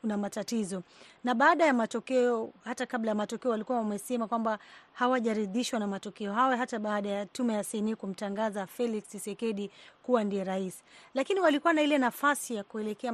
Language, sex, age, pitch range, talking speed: Swahili, female, 30-49, 205-245 Hz, 160 wpm